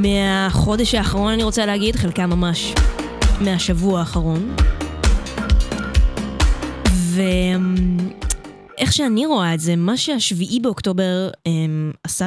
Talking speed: 95 wpm